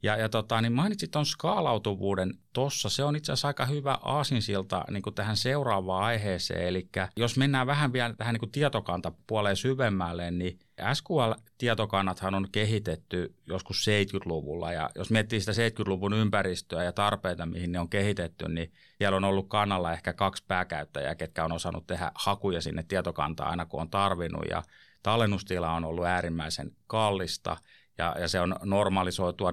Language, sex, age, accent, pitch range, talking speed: Finnish, male, 30-49, native, 85-110 Hz, 150 wpm